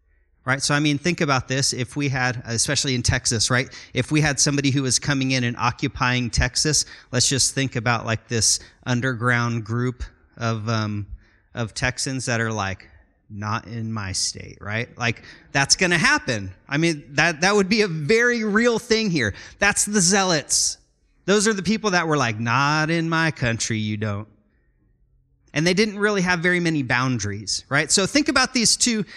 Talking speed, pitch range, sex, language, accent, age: 185 wpm, 110-165 Hz, male, English, American, 30-49